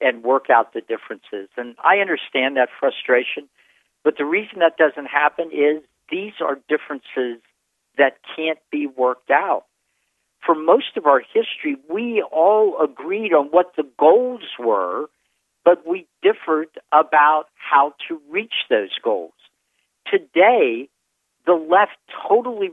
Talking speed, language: 135 wpm, English